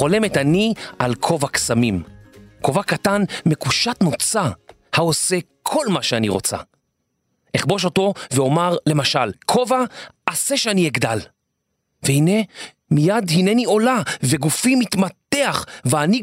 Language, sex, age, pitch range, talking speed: Hebrew, male, 40-59, 135-195 Hz, 105 wpm